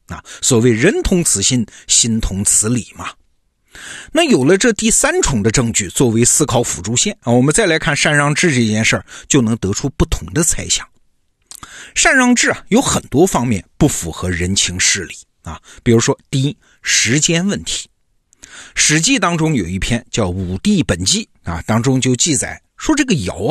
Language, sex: Chinese, male